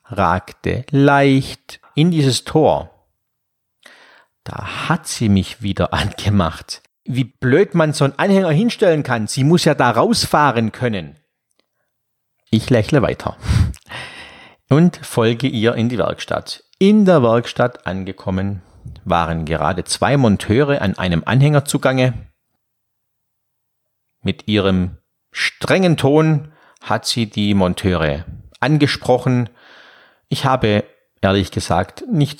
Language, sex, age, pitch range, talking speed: German, male, 50-69, 95-140 Hz, 110 wpm